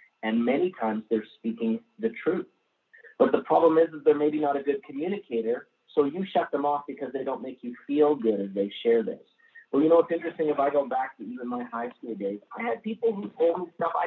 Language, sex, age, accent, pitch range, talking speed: English, male, 30-49, American, 120-175 Hz, 245 wpm